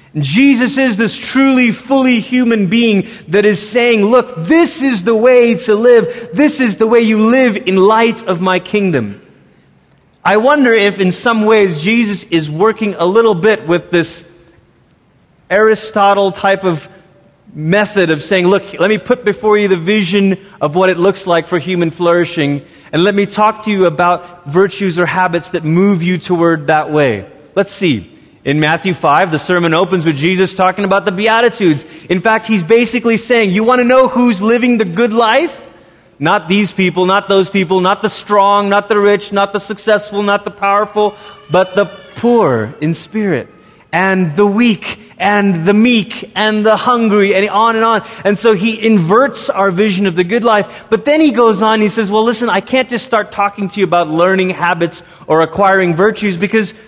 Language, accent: English, American